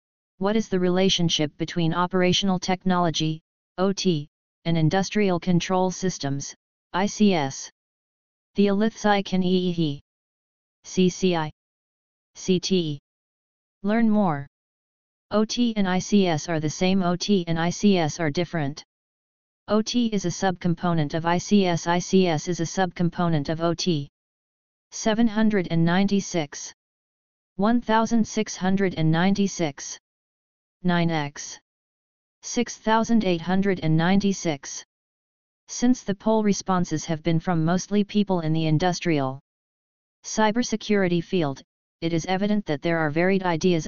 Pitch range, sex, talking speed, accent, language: 165-195 Hz, female, 95 wpm, American, Tamil